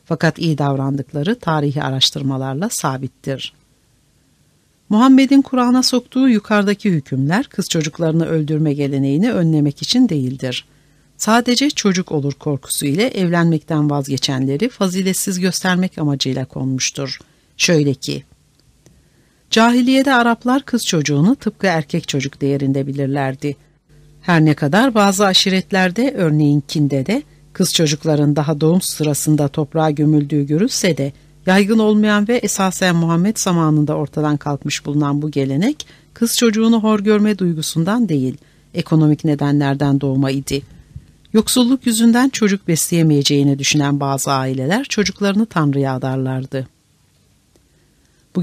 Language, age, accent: Turkish, 60-79, native